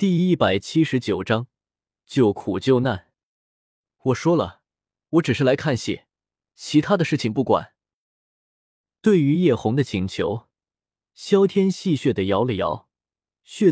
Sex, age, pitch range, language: male, 20-39, 110-165 Hz, Chinese